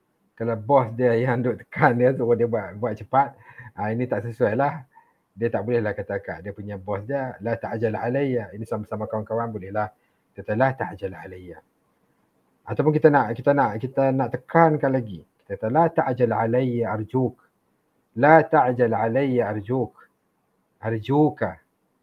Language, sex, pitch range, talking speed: English, male, 110-135 Hz, 165 wpm